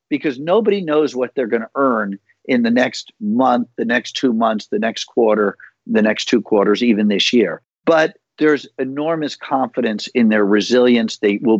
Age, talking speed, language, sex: 50-69, 180 wpm, English, male